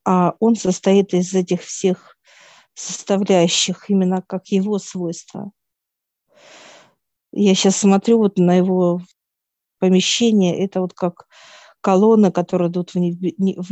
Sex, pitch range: female, 185-205 Hz